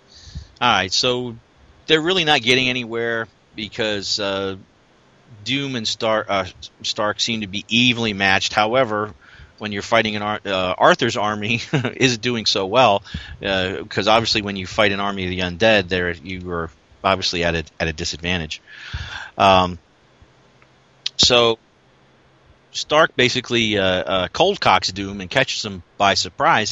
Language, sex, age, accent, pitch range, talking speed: English, male, 40-59, American, 90-115 Hz, 150 wpm